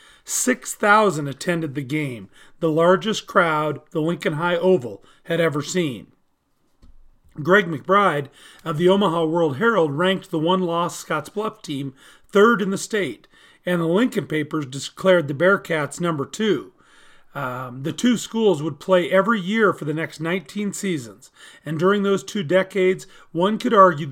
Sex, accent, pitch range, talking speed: male, American, 155-195 Hz, 150 wpm